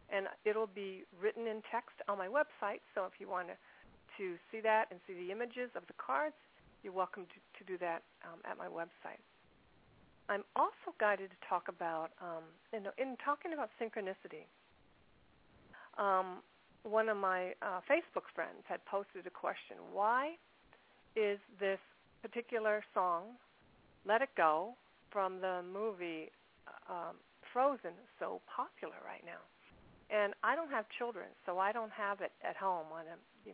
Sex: female